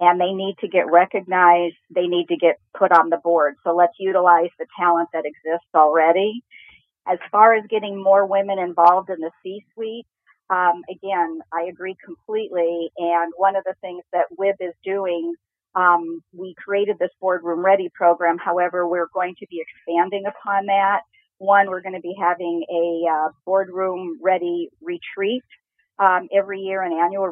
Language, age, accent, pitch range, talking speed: English, 50-69, American, 175-195 Hz, 165 wpm